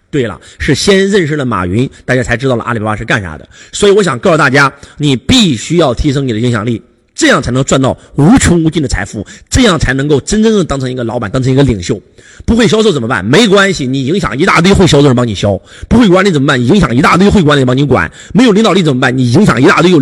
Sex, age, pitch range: male, 30-49, 125-185 Hz